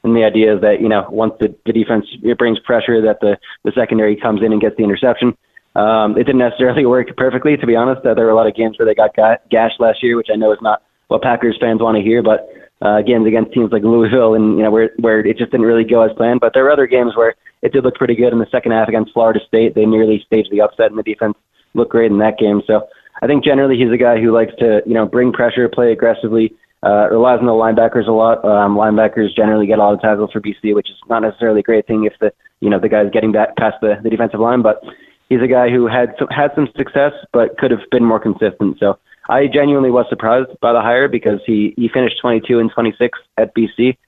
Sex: male